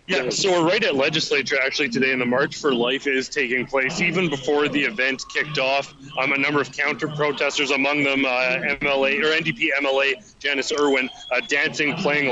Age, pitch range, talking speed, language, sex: 30-49, 130-155 Hz, 190 wpm, English, male